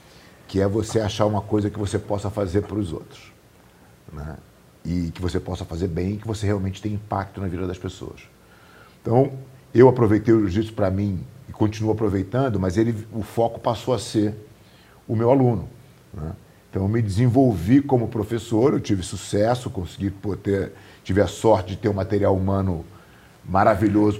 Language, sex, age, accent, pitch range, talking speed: Portuguese, male, 40-59, Brazilian, 95-115 Hz, 175 wpm